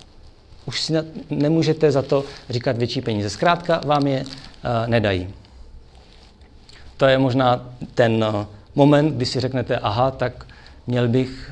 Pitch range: 110-135 Hz